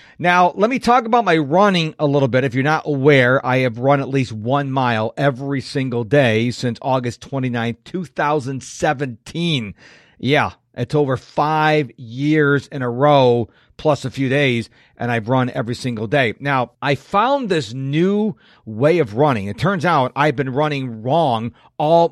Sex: male